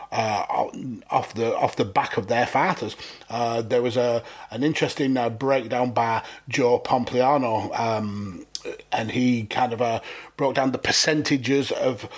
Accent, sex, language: British, male, English